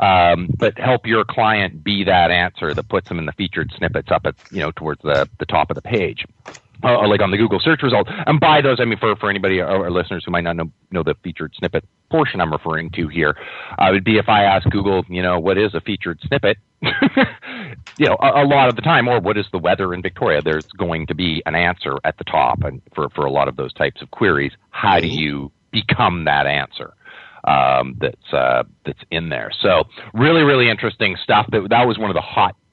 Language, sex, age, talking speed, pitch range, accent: English, male, 40-59, 240 wpm, 85-120 Hz, American